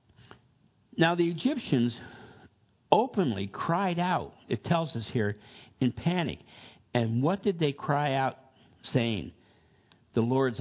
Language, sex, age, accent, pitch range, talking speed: English, male, 60-79, American, 100-130 Hz, 120 wpm